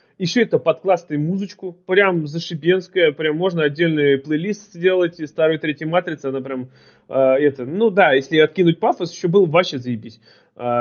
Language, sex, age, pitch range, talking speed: Russian, male, 30-49, 150-210 Hz, 160 wpm